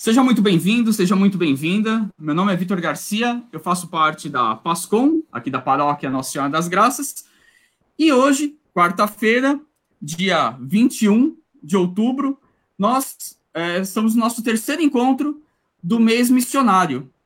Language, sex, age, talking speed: Portuguese, male, 20-39, 140 wpm